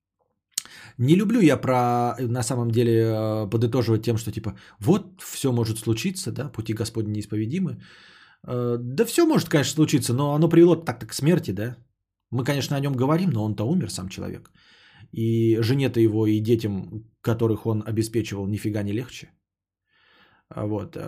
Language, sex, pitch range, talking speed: Bulgarian, male, 110-155 Hz, 150 wpm